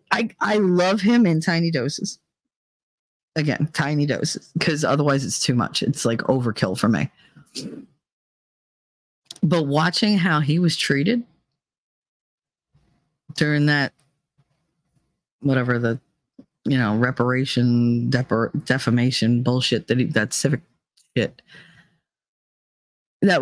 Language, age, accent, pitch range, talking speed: English, 40-59, American, 140-180 Hz, 110 wpm